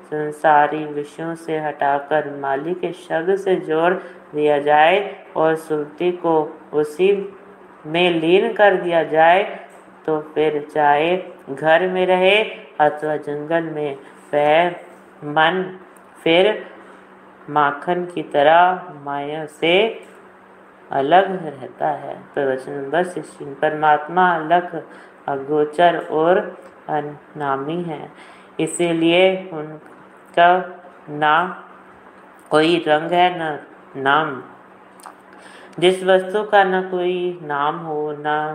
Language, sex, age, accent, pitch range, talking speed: Hindi, female, 50-69, native, 150-180 Hz, 85 wpm